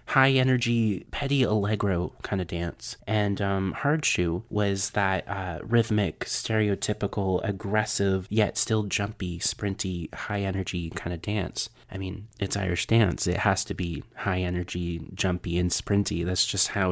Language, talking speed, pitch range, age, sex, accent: English, 155 wpm, 95-115 Hz, 30-49, male, American